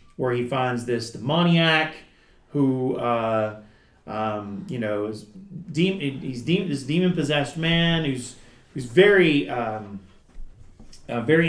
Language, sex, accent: English, male, American